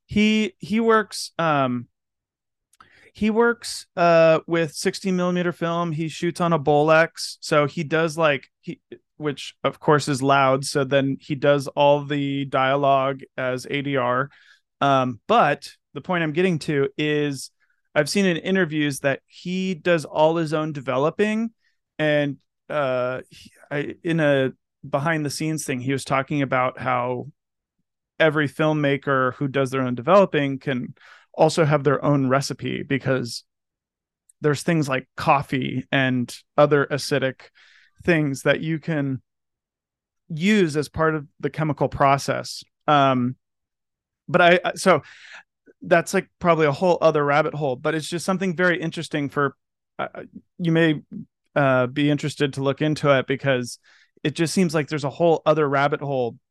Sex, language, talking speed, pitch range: male, English, 150 wpm, 135-165 Hz